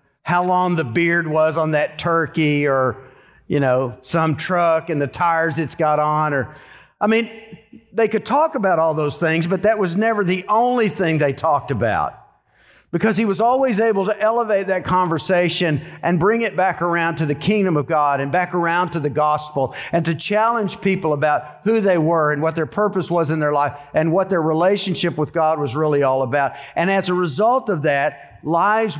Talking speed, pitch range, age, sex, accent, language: 200 wpm, 140-190 Hz, 50-69, male, American, English